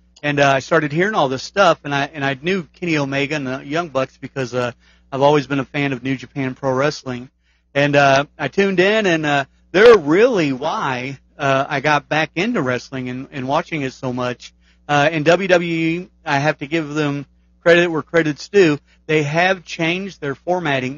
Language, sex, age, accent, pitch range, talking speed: English, male, 40-59, American, 130-155 Hz, 200 wpm